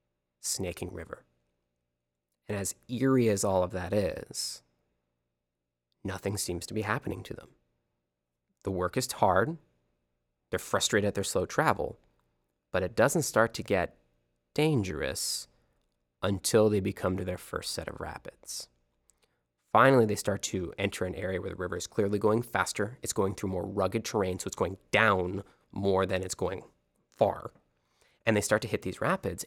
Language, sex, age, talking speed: English, male, 20-39, 160 wpm